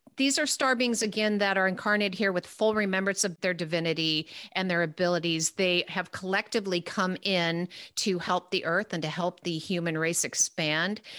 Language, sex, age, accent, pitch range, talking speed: English, female, 40-59, American, 170-200 Hz, 180 wpm